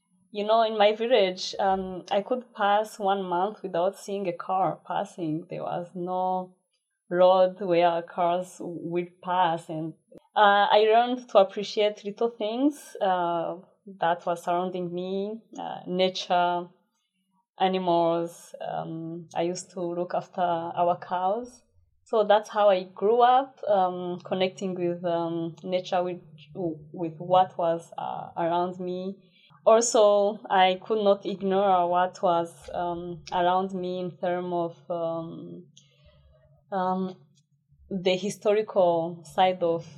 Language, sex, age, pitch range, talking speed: English, female, 20-39, 170-195 Hz, 130 wpm